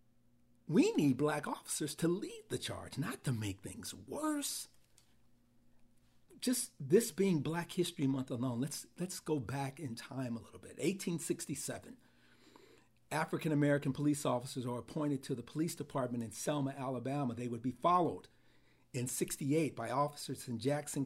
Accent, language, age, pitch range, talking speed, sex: American, English, 50-69, 130-170 Hz, 150 wpm, male